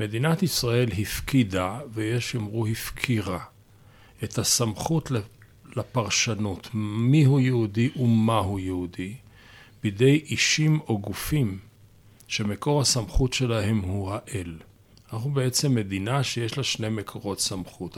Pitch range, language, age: 100-120 Hz, Hebrew, 40-59